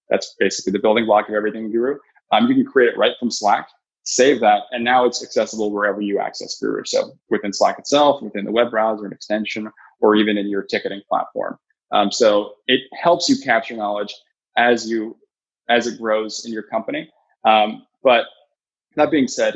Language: English